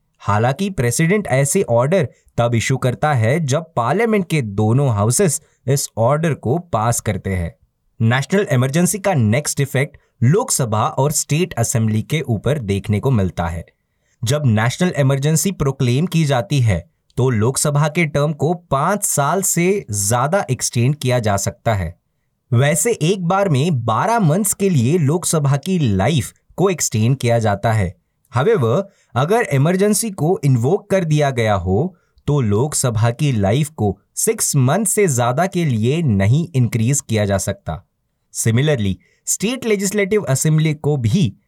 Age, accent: 20-39, native